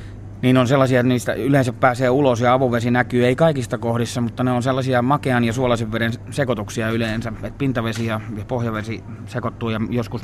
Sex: male